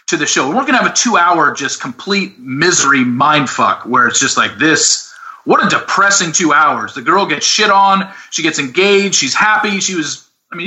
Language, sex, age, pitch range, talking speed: English, male, 30-49, 140-200 Hz, 200 wpm